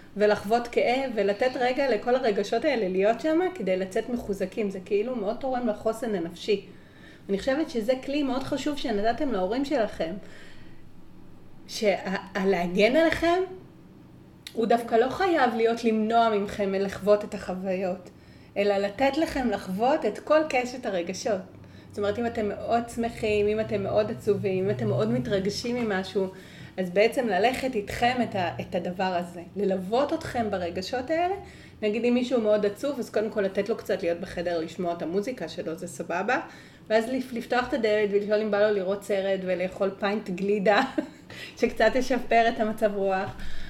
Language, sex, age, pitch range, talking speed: Hebrew, female, 30-49, 195-250 Hz, 150 wpm